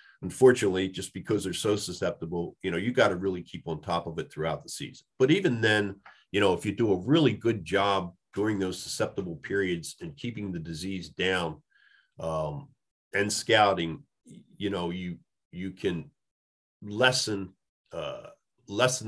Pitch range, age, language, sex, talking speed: 90-105 Hz, 40-59, English, male, 165 wpm